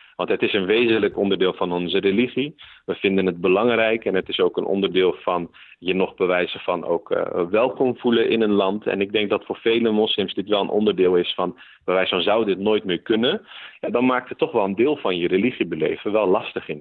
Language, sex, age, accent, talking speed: Dutch, male, 40-59, Dutch, 230 wpm